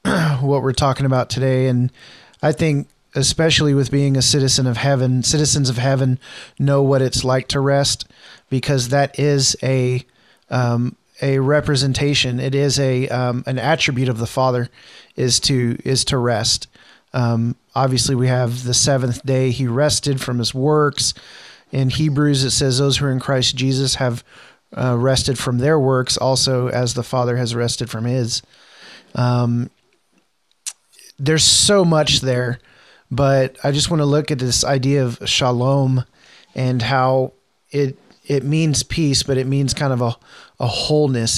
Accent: American